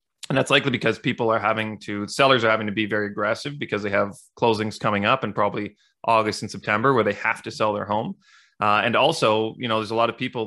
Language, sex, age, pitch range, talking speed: English, male, 30-49, 105-120 Hz, 245 wpm